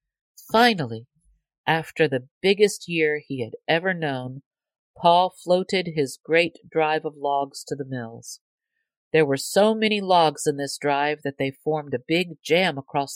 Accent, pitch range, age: American, 135-175 Hz, 50-69